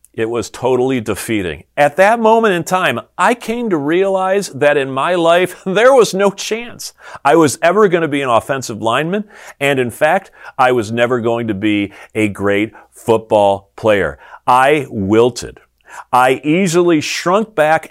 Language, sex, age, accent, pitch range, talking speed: English, male, 40-59, American, 115-180 Hz, 165 wpm